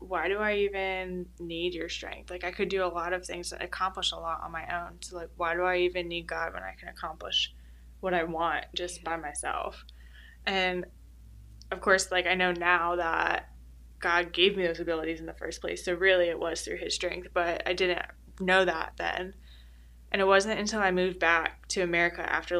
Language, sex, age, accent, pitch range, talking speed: English, female, 10-29, American, 165-185 Hz, 210 wpm